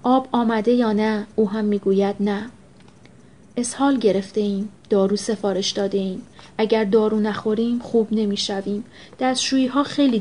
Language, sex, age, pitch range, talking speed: Persian, female, 30-49, 205-225 Hz, 140 wpm